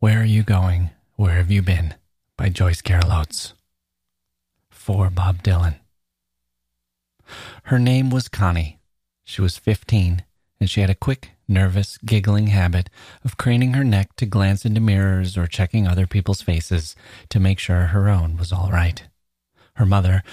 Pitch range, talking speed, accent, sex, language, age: 90-110 Hz, 155 wpm, American, male, English, 30-49